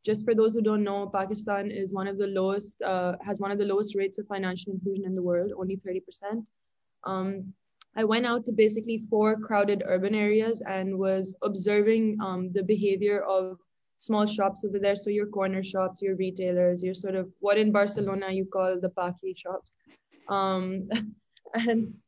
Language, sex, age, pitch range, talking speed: English, female, 20-39, 190-220 Hz, 180 wpm